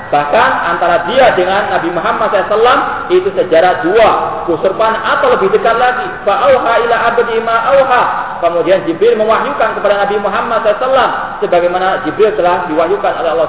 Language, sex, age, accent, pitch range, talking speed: Indonesian, male, 40-59, native, 185-250 Hz, 140 wpm